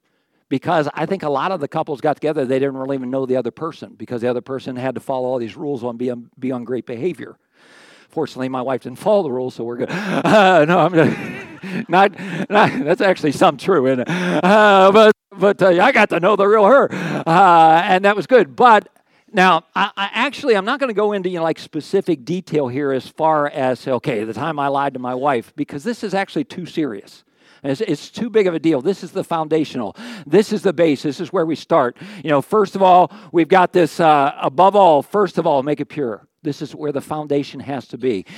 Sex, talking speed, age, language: male, 235 wpm, 50-69, English